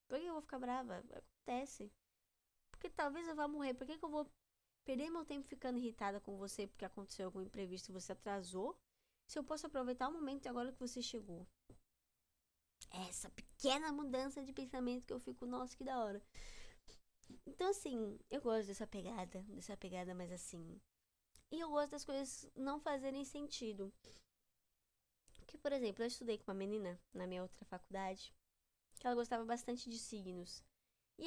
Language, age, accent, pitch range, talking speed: Portuguese, 10-29, Brazilian, 205-275 Hz, 175 wpm